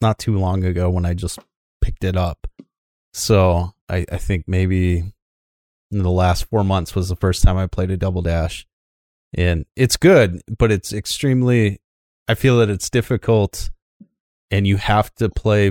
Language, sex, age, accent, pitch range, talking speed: English, male, 30-49, American, 90-110 Hz, 170 wpm